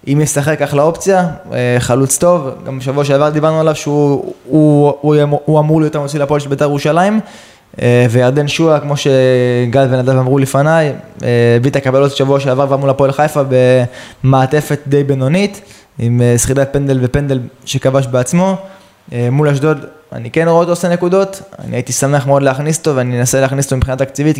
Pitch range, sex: 130-155 Hz, male